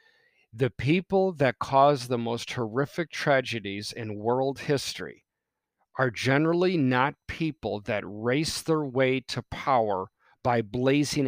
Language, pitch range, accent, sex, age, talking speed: English, 120-150 Hz, American, male, 40-59, 120 wpm